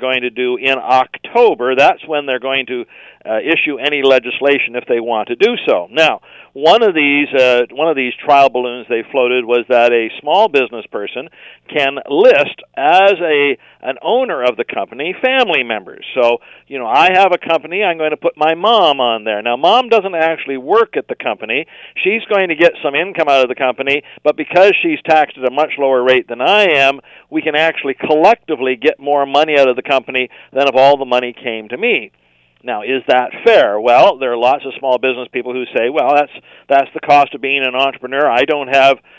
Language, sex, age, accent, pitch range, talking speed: English, male, 50-69, American, 125-160 Hz, 215 wpm